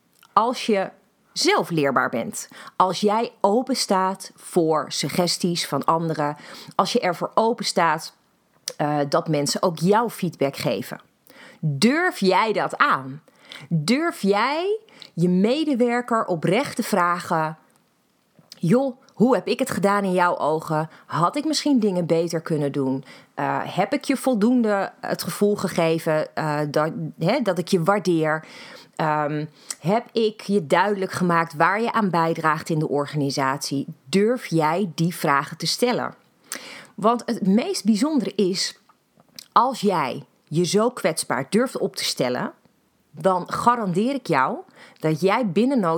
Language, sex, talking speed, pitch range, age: Dutch, female, 140 wpm, 165-235 Hz, 30-49